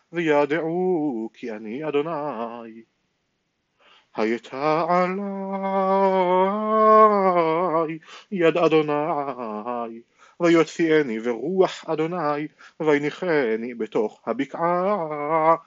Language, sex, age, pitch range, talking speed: Hebrew, male, 30-49, 140-175 Hz, 50 wpm